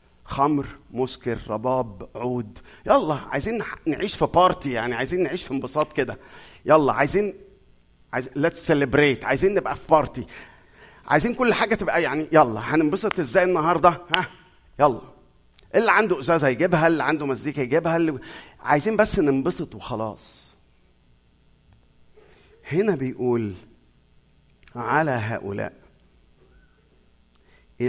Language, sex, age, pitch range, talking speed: Arabic, male, 50-69, 100-165 Hz, 110 wpm